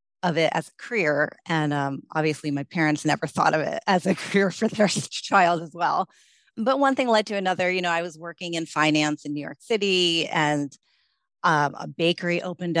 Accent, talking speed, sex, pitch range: American, 205 wpm, female, 150-180 Hz